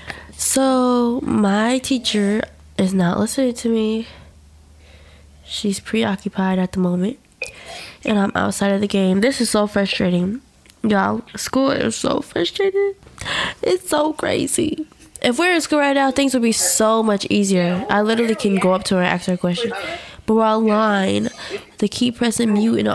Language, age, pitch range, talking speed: English, 20-39, 180-250 Hz, 165 wpm